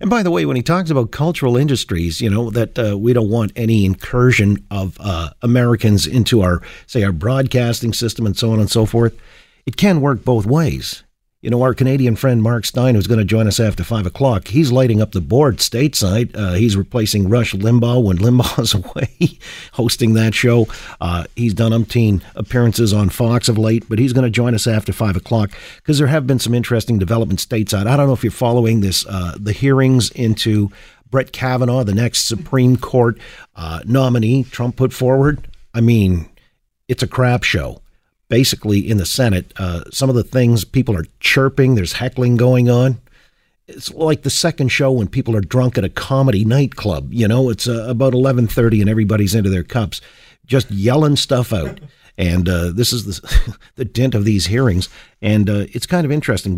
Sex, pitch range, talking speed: male, 105-130 Hz, 195 wpm